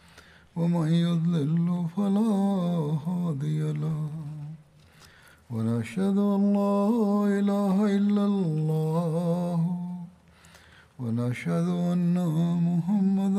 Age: 60-79